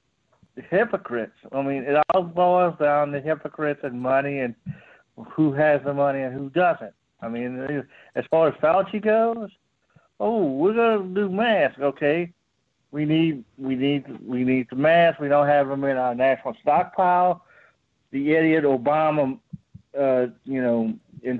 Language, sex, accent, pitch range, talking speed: English, male, American, 130-155 Hz, 155 wpm